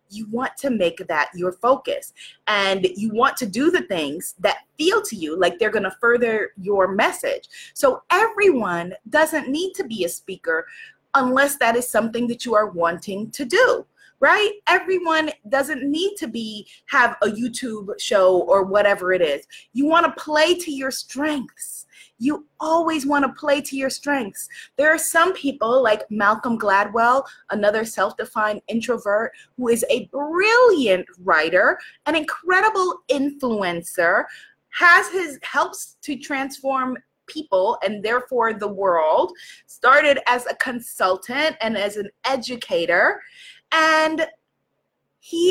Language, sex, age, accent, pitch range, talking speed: English, female, 30-49, American, 215-325 Hz, 145 wpm